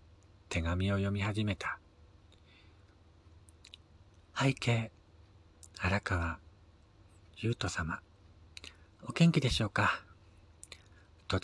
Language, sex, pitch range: Japanese, male, 85-105 Hz